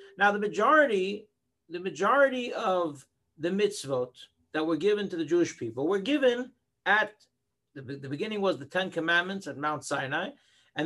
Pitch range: 175-230 Hz